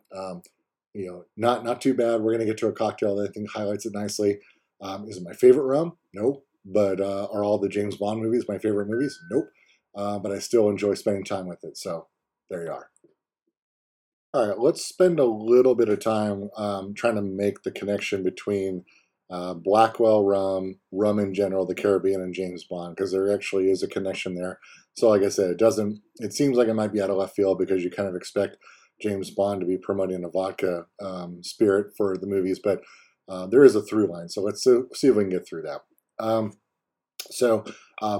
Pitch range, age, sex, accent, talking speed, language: 95-110 Hz, 30-49, male, American, 215 wpm, English